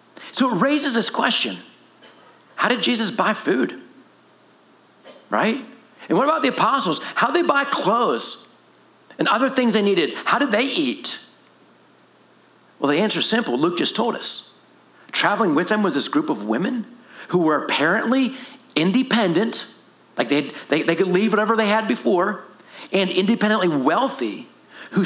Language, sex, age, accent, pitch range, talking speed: English, male, 50-69, American, 165-230 Hz, 155 wpm